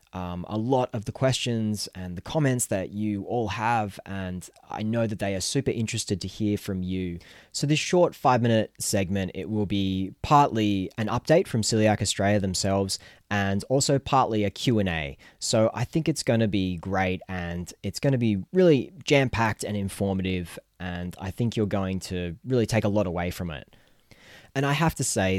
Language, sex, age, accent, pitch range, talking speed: English, male, 20-39, Australian, 90-110 Hz, 190 wpm